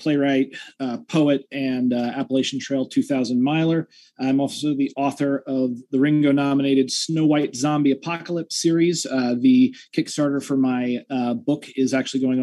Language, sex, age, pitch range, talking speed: English, male, 30-49, 130-175 Hz, 150 wpm